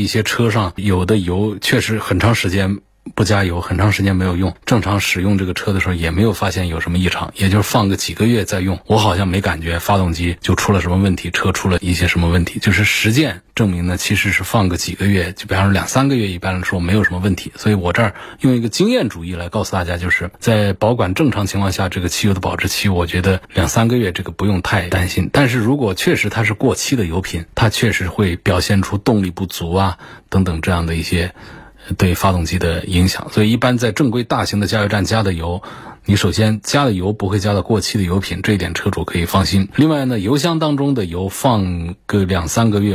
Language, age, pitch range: Chinese, 20-39, 90-110 Hz